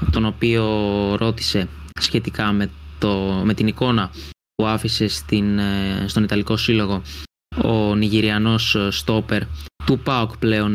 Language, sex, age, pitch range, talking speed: Greek, male, 20-39, 105-125 Hz, 115 wpm